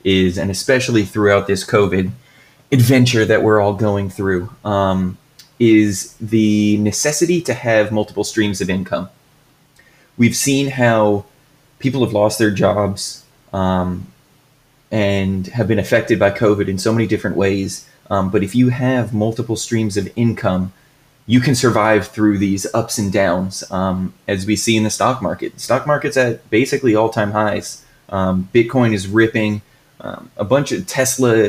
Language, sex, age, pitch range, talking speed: English, male, 20-39, 100-125 Hz, 160 wpm